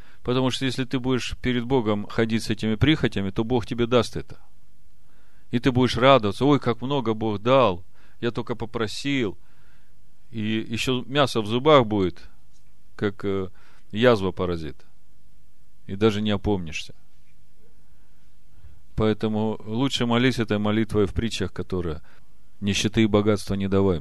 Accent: native